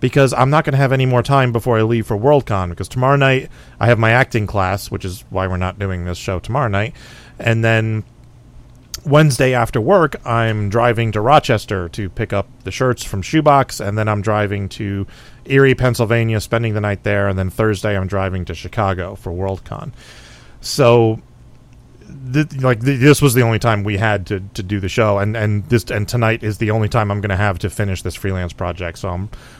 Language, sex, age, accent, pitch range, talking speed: English, male, 30-49, American, 100-125 Hz, 210 wpm